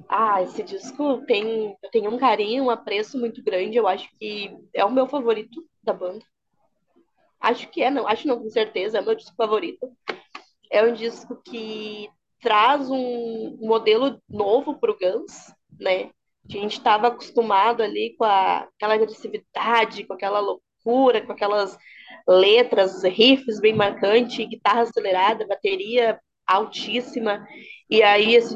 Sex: female